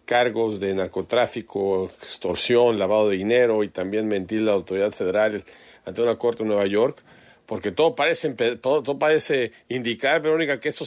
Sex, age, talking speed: male, 40-59, 170 wpm